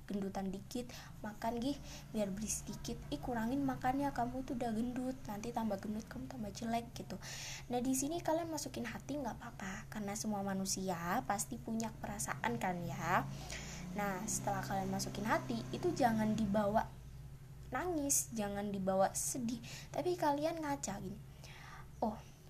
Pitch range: 185-235 Hz